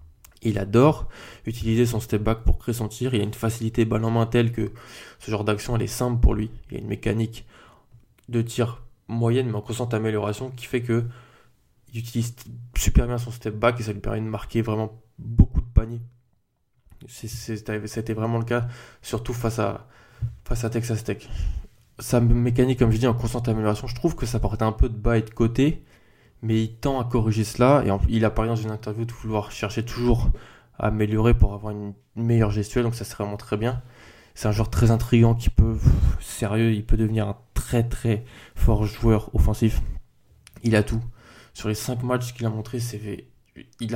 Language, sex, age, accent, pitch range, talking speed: French, male, 20-39, French, 110-120 Hz, 200 wpm